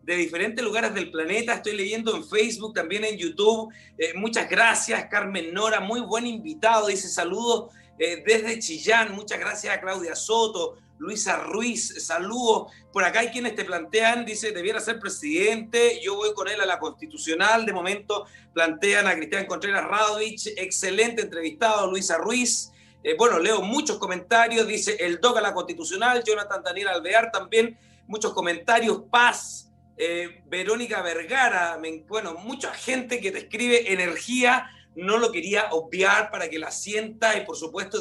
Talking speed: 155 wpm